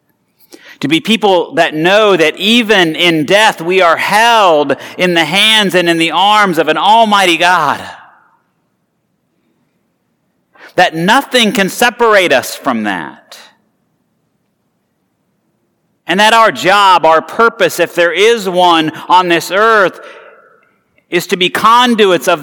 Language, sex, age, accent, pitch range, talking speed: English, male, 40-59, American, 145-210 Hz, 130 wpm